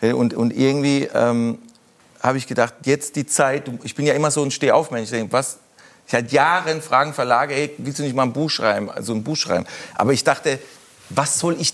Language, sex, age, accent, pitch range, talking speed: German, male, 40-59, German, 120-150 Hz, 225 wpm